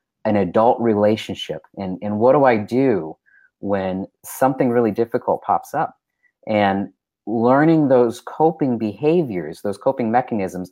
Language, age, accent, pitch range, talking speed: English, 30-49, American, 95-120 Hz, 130 wpm